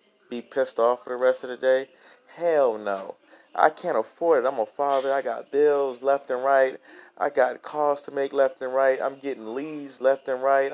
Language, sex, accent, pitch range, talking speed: English, male, American, 125-155 Hz, 210 wpm